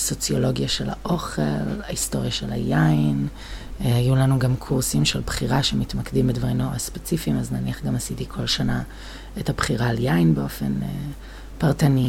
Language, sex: Hebrew, female